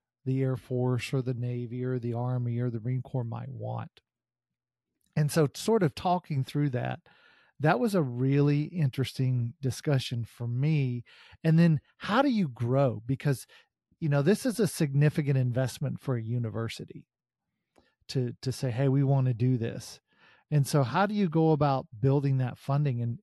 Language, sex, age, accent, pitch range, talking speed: English, male, 40-59, American, 125-160 Hz, 175 wpm